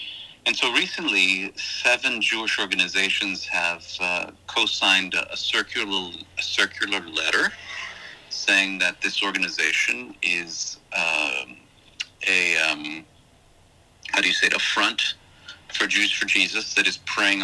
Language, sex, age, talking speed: English, male, 40-59, 125 wpm